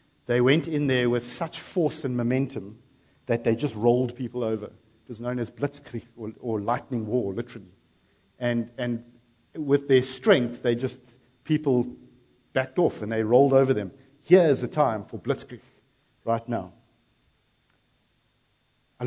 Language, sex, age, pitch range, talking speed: English, male, 50-69, 120-150 Hz, 155 wpm